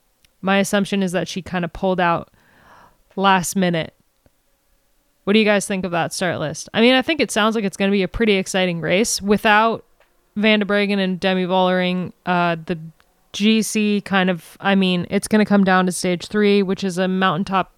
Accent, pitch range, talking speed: American, 175-205 Hz, 200 wpm